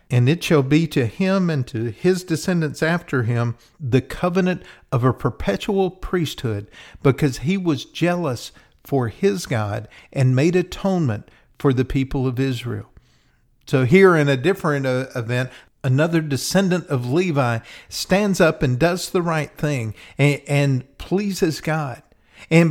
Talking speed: 145 wpm